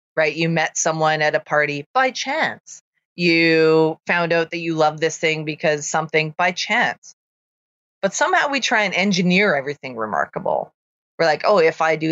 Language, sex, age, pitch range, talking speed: English, female, 30-49, 155-190 Hz, 175 wpm